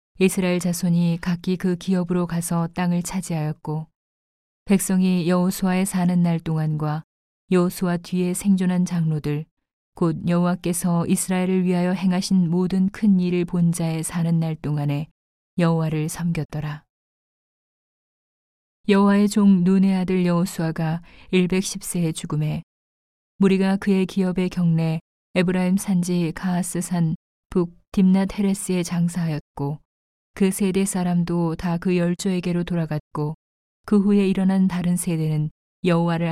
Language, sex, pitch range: Korean, female, 165-185 Hz